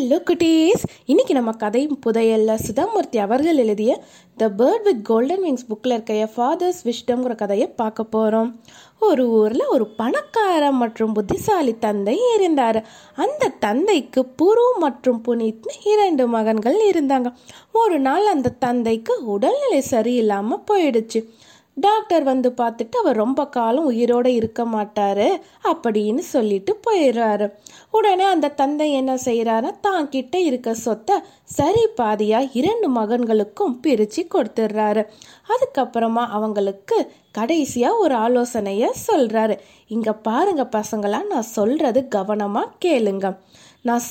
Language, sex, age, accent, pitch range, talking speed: Tamil, female, 20-39, native, 220-330 Hz, 90 wpm